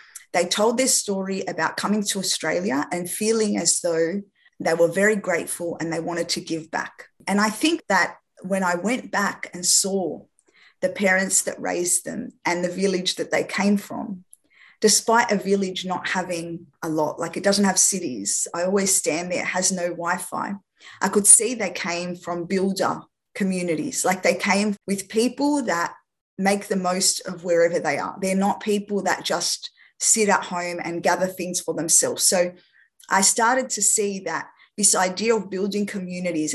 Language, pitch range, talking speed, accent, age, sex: English, 175-210 Hz, 180 wpm, Australian, 20-39, female